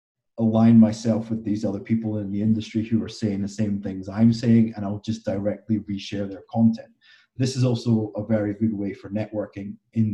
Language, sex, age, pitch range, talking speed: English, male, 30-49, 105-115 Hz, 200 wpm